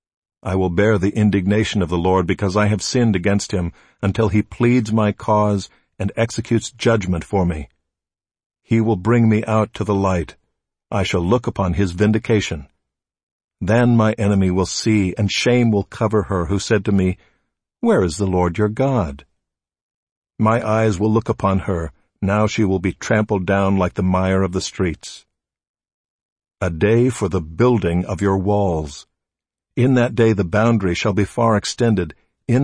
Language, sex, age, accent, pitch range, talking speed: English, male, 50-69, American, 95-110 Hz, 175 wpm